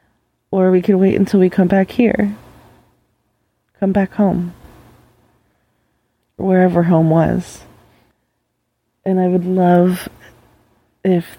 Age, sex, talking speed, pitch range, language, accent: 20-39, female, 105 wpm, 165-185 Hz, English, American